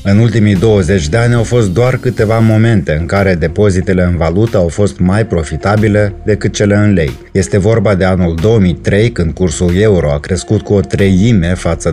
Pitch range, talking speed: 90-110 Hz, 185 wpm